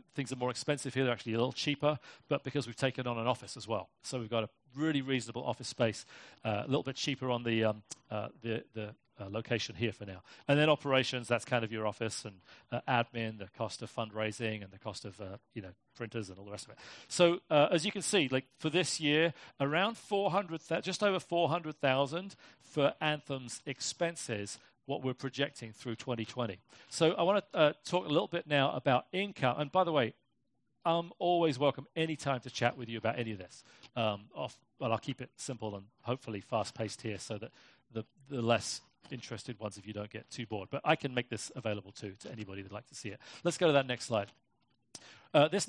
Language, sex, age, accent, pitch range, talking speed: English, male, 40-59, British, 115-155 Hz, 225 wpm